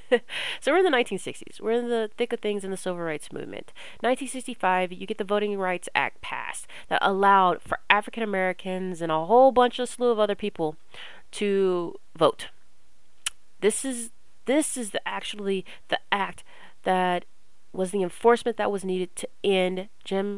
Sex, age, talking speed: female, 30-49, 170 wpm